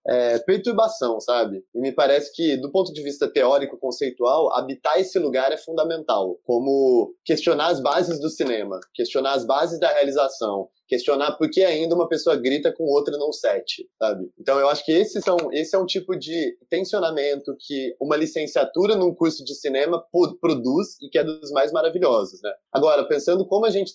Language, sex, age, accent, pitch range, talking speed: Portuguese, male, 20-39, Brazilian, 140-205 Hz, 175 wpm